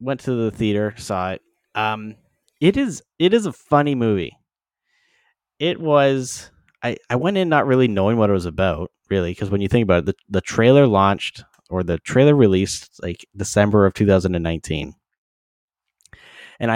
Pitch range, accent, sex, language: 95-120 Hz, American, male, English